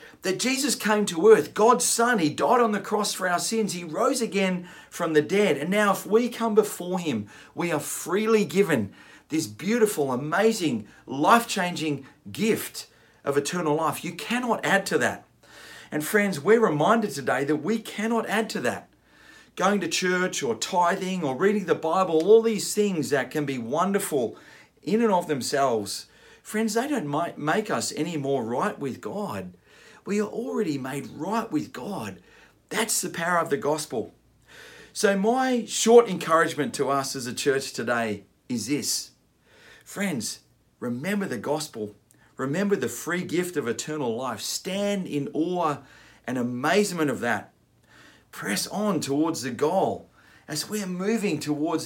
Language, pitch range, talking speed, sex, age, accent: English, 140-210 Hz, 160 wpm, male, 40-59, Australian